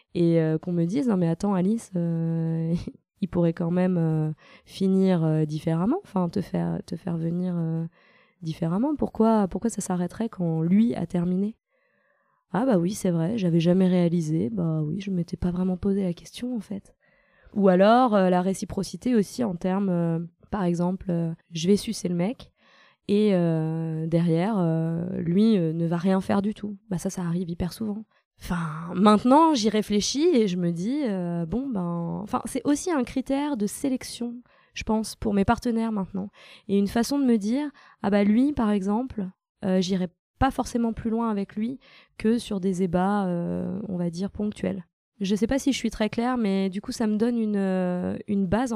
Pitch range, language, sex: 175-225 Hz, French, female